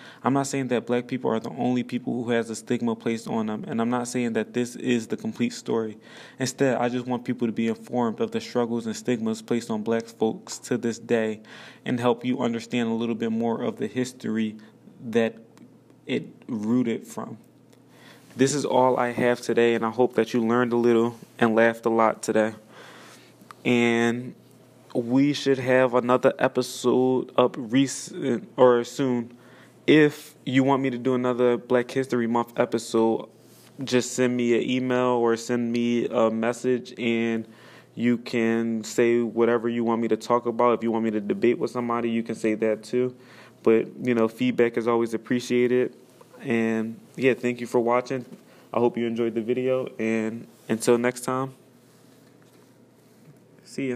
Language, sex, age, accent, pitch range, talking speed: English, male, 20-39, American, 115-125 Hz, 180 wpm